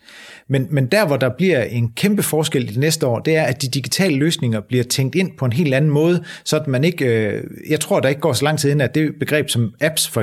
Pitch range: 125-165 Hz